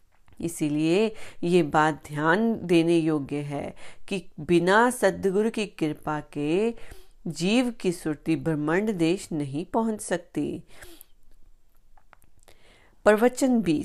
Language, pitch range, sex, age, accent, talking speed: Hindi, 155-195 Hz, female, 40-59, native, 85 wpm